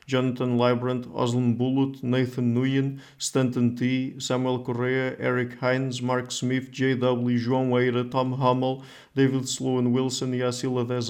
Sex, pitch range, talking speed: male, 120-130 Hz, 130 wpm